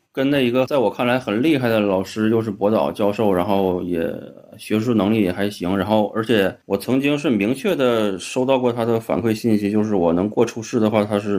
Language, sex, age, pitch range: Chinese, male, 20-39, 100-120 Hz